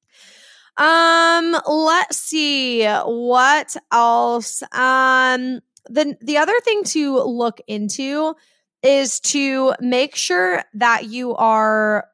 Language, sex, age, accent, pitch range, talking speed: English, female, 20-39, American, 210-270 Hz, 100 wpm